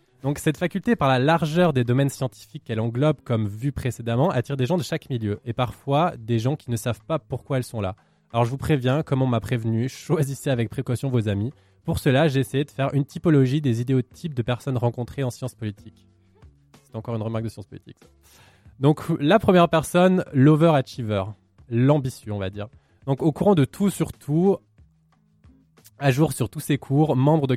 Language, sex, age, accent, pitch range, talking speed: French, male, 20-39, French, 115-150 Hz, 205 wpm